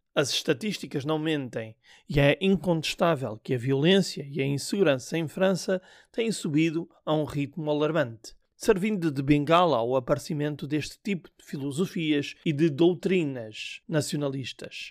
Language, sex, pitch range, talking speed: Portuguese, male, 140-180 Hz, 135 wpm